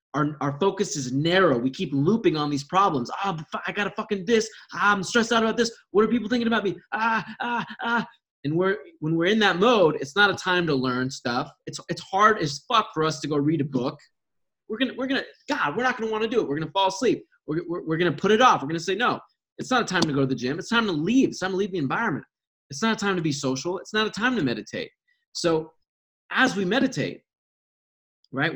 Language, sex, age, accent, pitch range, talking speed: English, male, 20-39, American, 145-220 Hz, 255 wpm